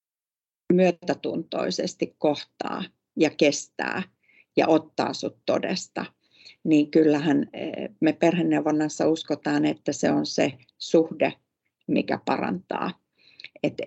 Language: Finnish